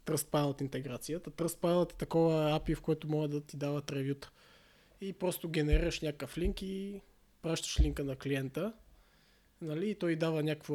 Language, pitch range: Bulgarian, 145-165 Hz